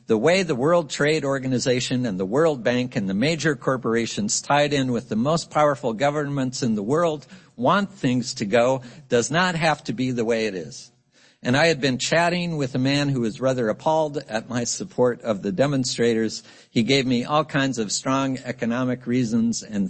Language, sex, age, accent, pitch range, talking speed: English, male, 60-79, American, 120-155 Hz, 195 wpm